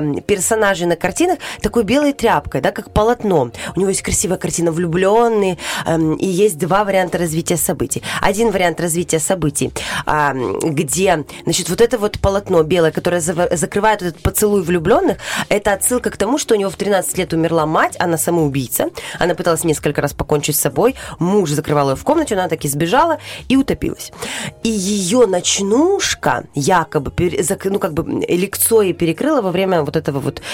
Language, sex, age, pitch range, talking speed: Russian, female, 20-39, 170-225 Hz, 170 wpm